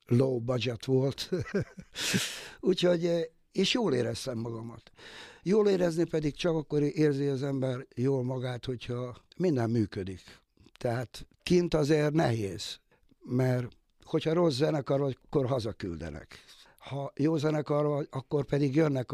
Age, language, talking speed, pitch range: 60-79, Hungarian, 120 wpm, 115-140 Hz